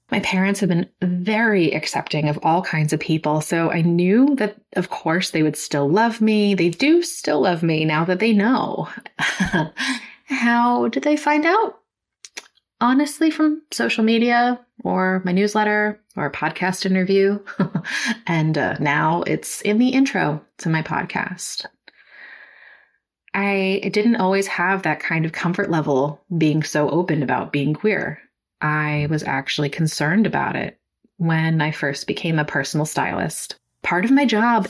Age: 20-39